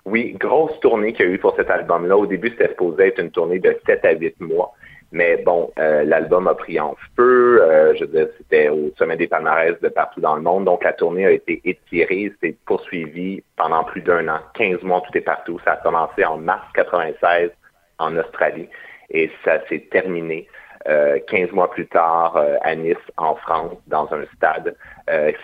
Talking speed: 205 wpm